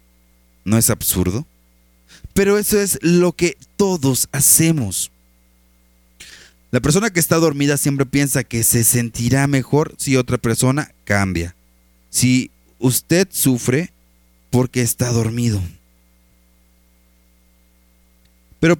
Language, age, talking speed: Spanish, 30-49, 100 wpm